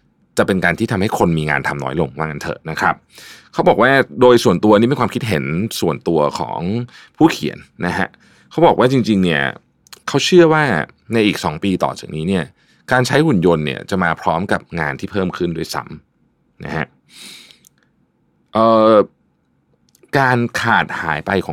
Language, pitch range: Thai, 85-120 Hz